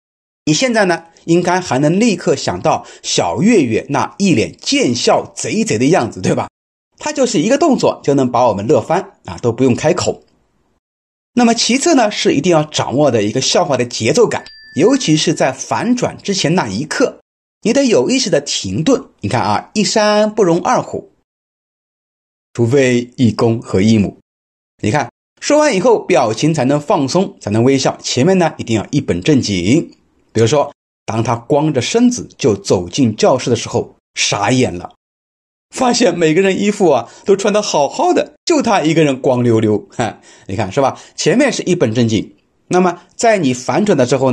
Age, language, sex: 30-49, Chinese, male